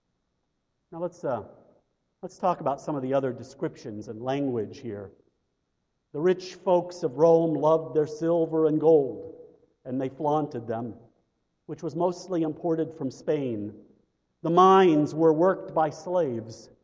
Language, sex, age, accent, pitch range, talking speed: English, male, 50-69, American, 135-180 Hz, 145 wpm